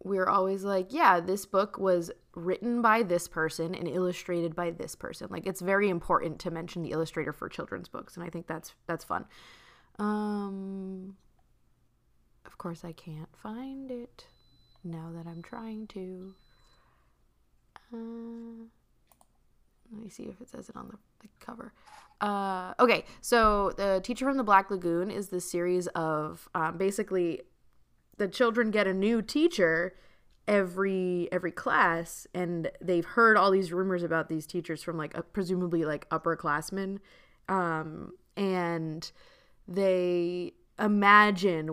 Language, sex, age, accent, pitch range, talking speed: English, female, 20-39, American, 165-200 Hz, 145 wpm